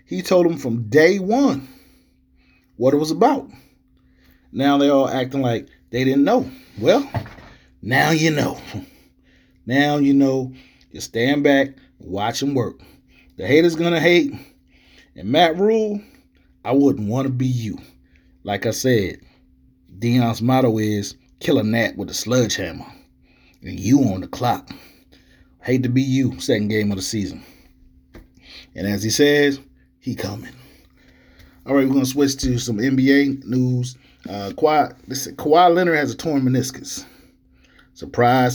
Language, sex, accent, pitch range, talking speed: English, male, American, 95-135 Hz, 150 wpm